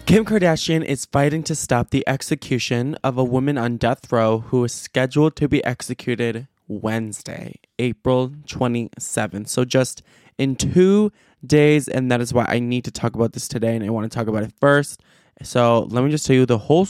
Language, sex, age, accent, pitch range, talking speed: English, male, 20-39, American, 115-140 Hz, 195 wpm